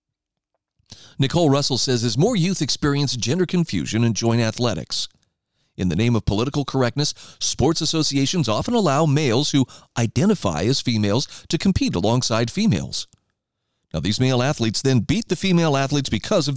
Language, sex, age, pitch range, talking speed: English, male, 40-59, 115-160 Hz, 150 wpm